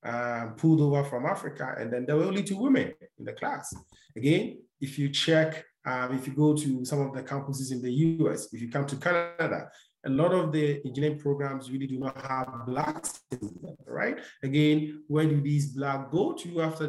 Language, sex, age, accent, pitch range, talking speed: English, male, 30-49, Nigerian, 125-150 Hz, 205 wpm